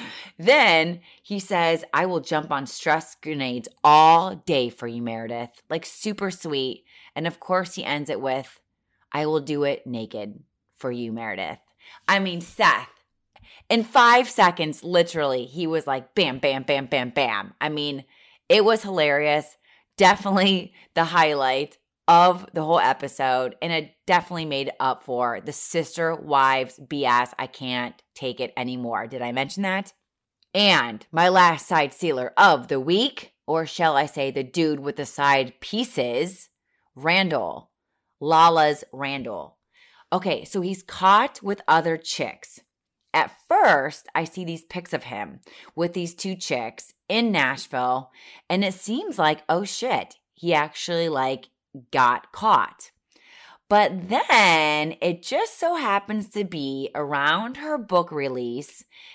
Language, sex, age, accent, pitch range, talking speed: English, female, 30-49, American, 135-185 Hz, 145 wpm